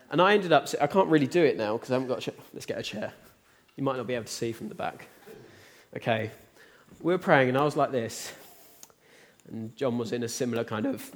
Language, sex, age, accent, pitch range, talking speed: English, male, 20-39, British, 130-195 Hz, 255 wpm